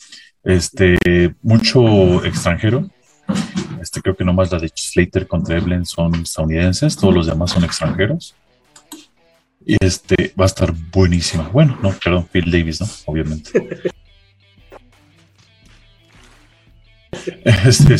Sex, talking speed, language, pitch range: male, 110 wpm, Spanish, 90-130 Hz